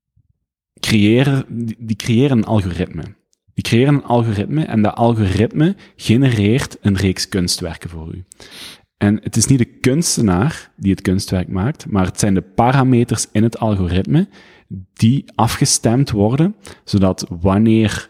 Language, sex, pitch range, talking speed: Dutch, male, 95-115 Hz, 135 wpm